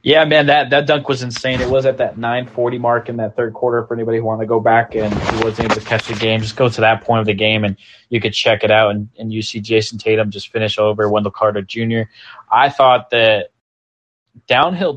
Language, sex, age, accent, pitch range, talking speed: English, male, 20-39, American, 110-130 Hz, 250 wpm